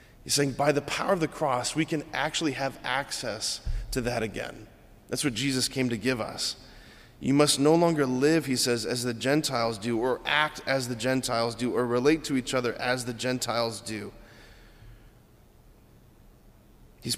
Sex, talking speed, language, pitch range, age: male, 175 wpm, English, 120-145 Hz, 30-49